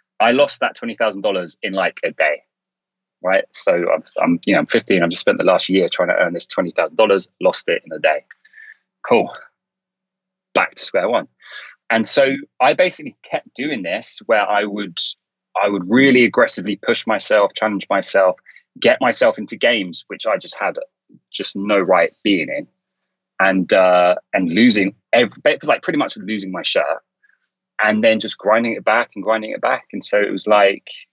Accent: British